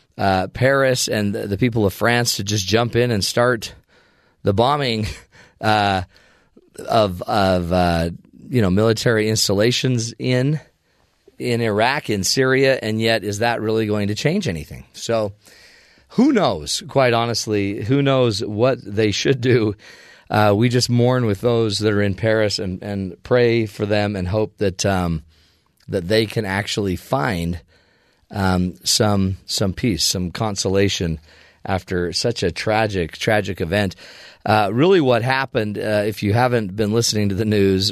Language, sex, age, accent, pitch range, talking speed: English, male, 40-59, American, 95-125 Hz, 150 wpm